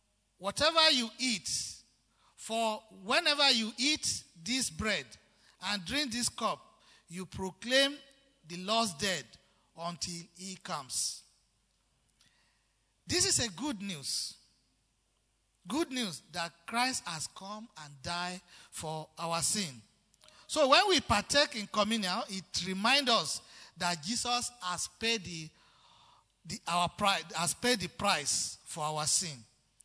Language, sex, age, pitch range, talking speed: English, male, 50-69, 175-235 Hz, 125 wpm